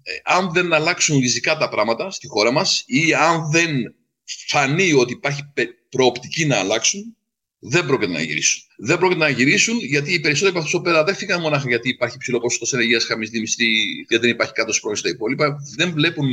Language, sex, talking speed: Greek, male, 185 wpm